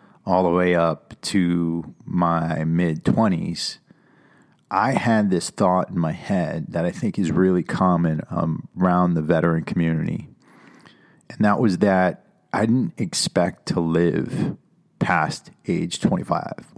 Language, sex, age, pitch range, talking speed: English, male, 40-59, 85-100 Hz, 130 wpm